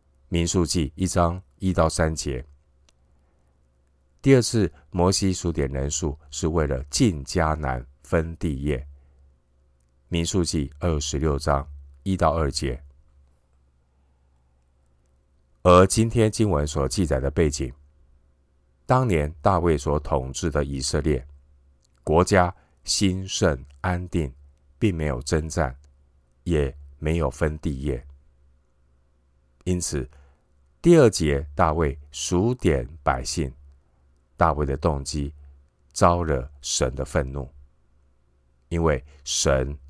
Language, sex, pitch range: Chinese, male, 65-80 Hz